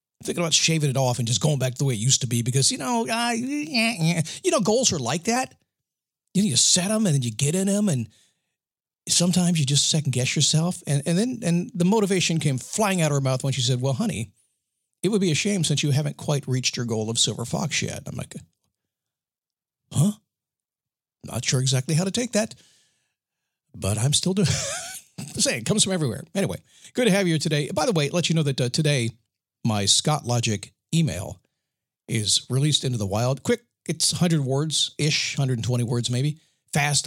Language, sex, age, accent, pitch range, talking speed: English, male, 50-69, American, 125-175 Hz, 205 wpm